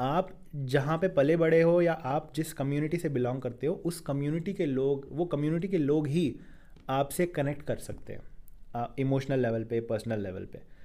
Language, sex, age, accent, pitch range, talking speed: Hindi, male, 20-39, native, 125-160 Hz, 190 wpm